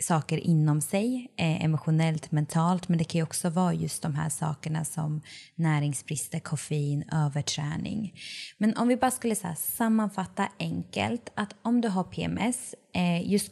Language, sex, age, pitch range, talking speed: Swedish, female, 20-39, 160-205 Hz, 140 wpm